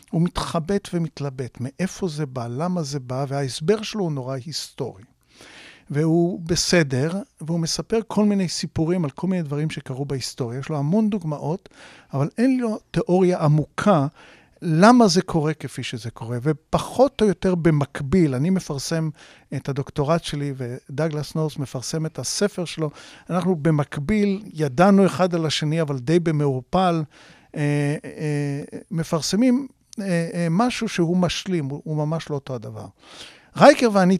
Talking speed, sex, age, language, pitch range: 135 wpm, male, 50-69, Hebrew, 145-185 Hz